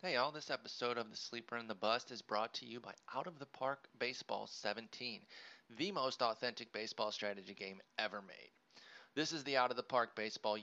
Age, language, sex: 30-49, English, male